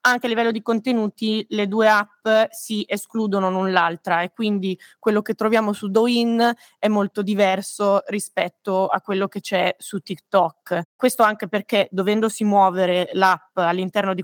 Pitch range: 185-220 Hz